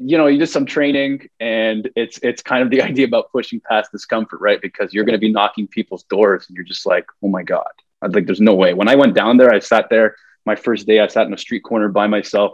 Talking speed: 275 wpm